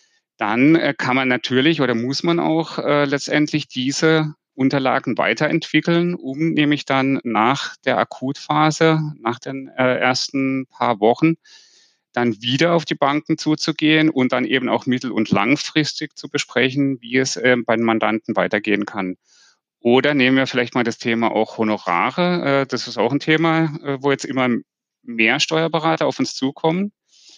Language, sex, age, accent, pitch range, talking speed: German, male, 30-49, German, 125-155 Hz, 160 wpm